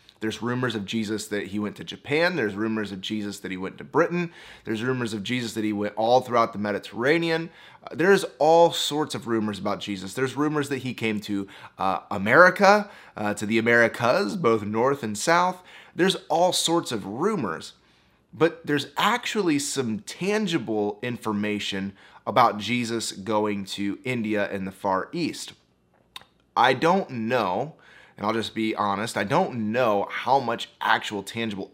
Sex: male